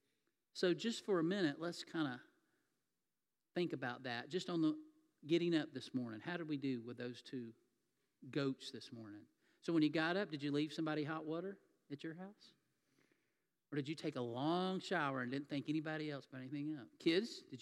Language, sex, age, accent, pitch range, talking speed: English, male, 40-59, American, 140-190 Hz, 200 wpm